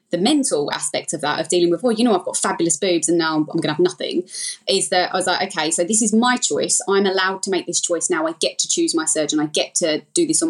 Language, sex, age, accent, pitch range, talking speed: English, female, 20-39, British, 170-205 Hz, 285 wpm